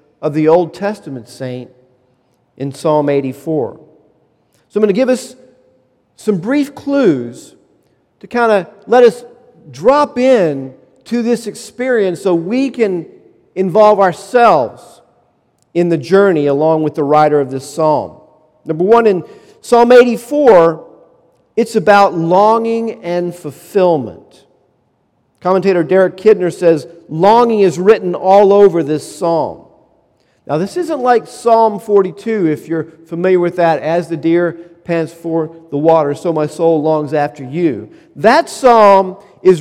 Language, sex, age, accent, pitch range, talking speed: English, male, 50-69, American, 155-215 Hz, 135 wpm